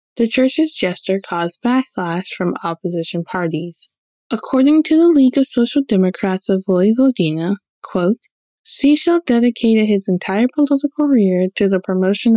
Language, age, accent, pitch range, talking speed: English, 20-39, American, 170-235 Hz, 130 wpm